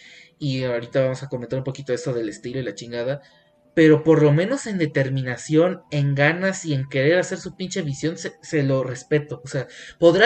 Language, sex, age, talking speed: Spanish, male, 20-39, 205 wpm